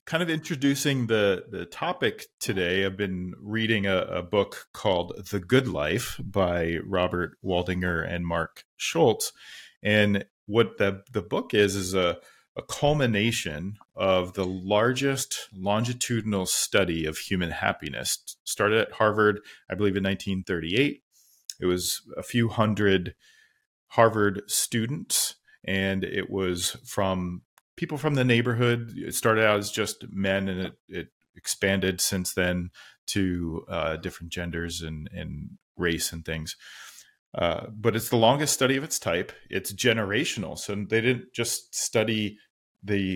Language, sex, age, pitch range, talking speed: English, male, 40-59, 90-115 Hz, 140 wpm